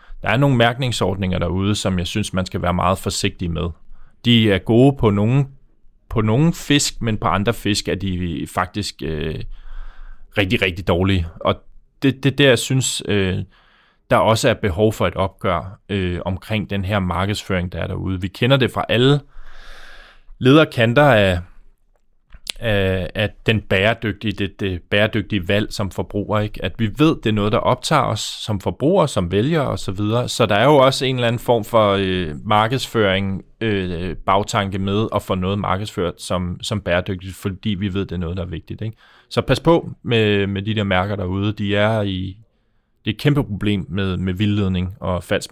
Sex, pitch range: male, 95-115 Hz